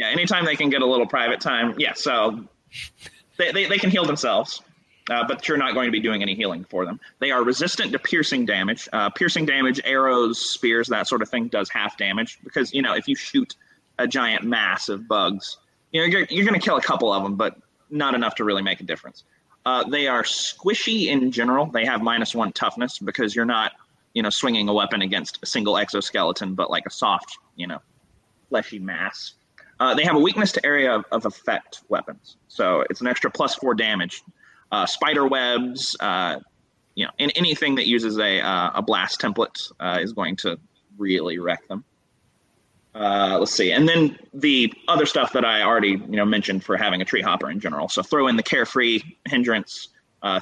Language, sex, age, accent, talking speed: English, male, 30-49, American, 210 wpm